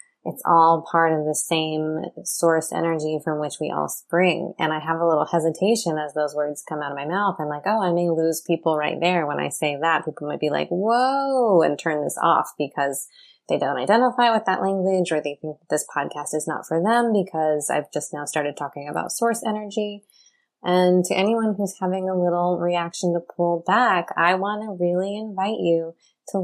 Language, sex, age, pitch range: English, female, 20-39, 165-195 Hz